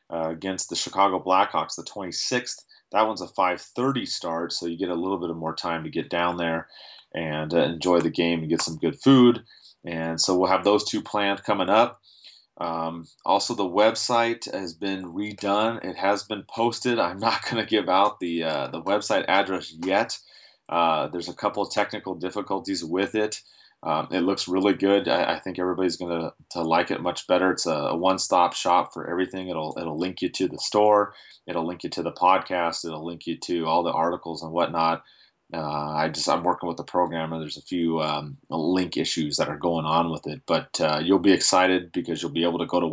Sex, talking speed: male, 210 wpm